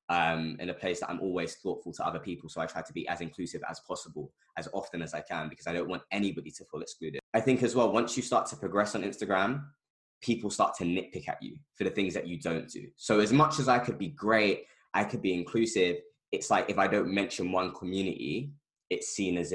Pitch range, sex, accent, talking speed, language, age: 90-125 Hz, male, British, 245 wpm, English, 20-39